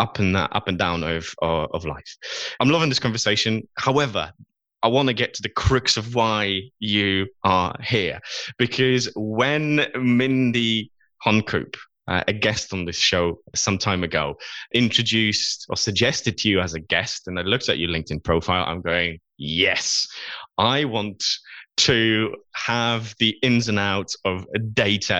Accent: British